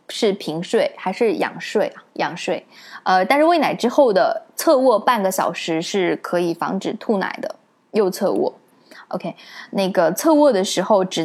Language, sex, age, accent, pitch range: Chinese, female, 10-29, native, 185-255 Hz